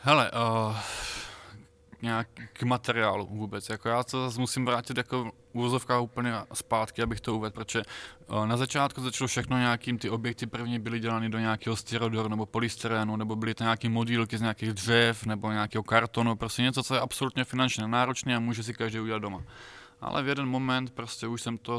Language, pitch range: Czech, 110-125 Hz